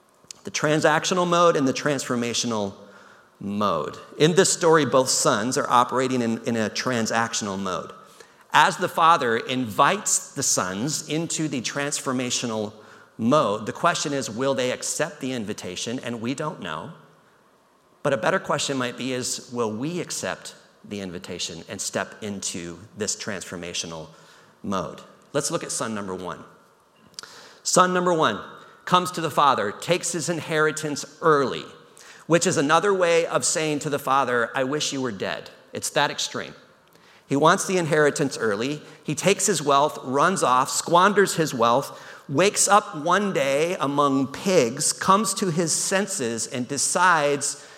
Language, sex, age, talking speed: English, male, 40-59, 150 wpm